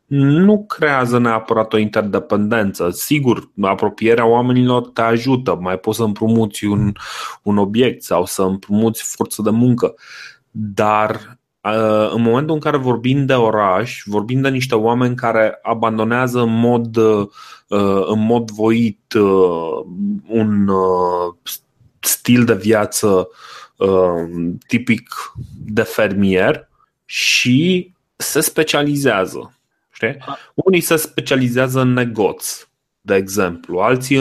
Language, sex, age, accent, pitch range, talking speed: Romanian, male, 30-49, native, 105-130 Hz, 105 wpm